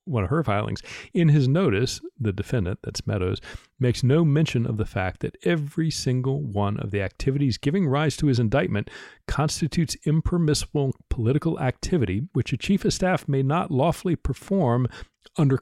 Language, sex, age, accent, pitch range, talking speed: English, male, 40-59, American, 115-155 Hz, 165 wpm